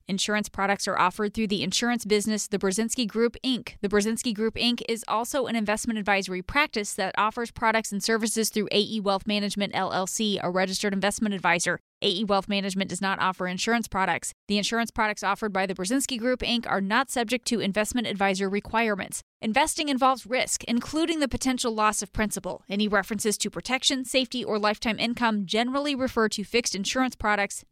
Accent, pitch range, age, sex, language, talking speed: American, 200-245 Hz, 20-39, female, English, 180 wpm